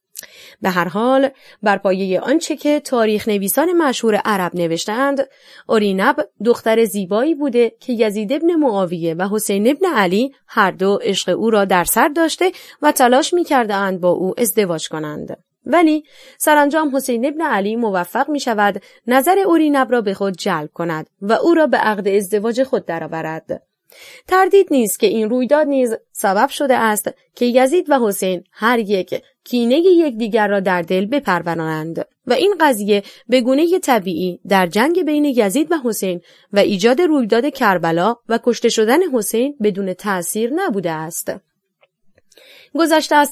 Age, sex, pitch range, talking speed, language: 30-49, female, 195-275 Hz, 155 wpm, Persian